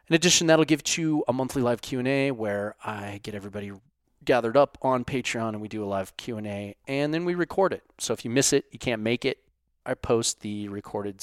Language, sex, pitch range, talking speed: English, male, 105-140 Hz, 220 wpm